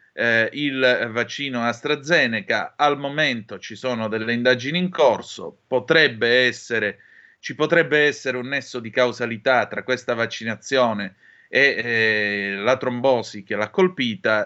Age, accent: 30-49, native